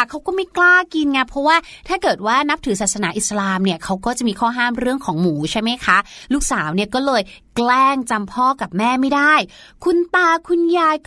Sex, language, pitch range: female, Thai, 225-305 Hz